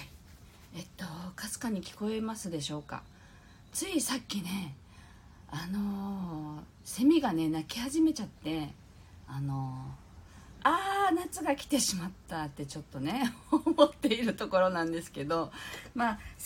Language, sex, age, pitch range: Japanese, female, 40-59, 145-230 Hz